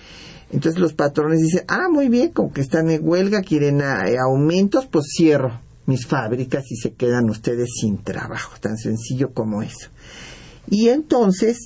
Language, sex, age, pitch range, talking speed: Spanish, male, 50-69, 130-170 Hz, 165 wpm